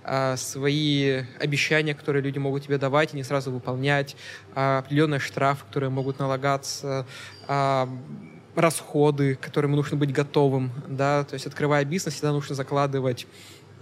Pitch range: 135-150 Hz